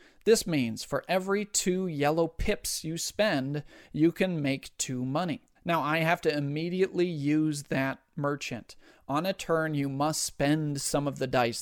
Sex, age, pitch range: male, 40-59, 135-170 Hz